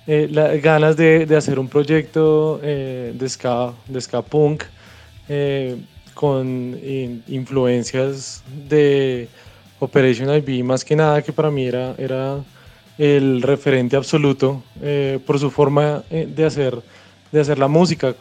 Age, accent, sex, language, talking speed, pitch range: 20-39, Colombian, male, Spanish, 140 wpm, 130-155 Hz